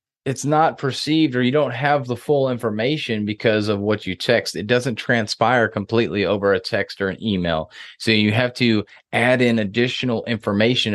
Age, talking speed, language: 30-49, 180 wpm, English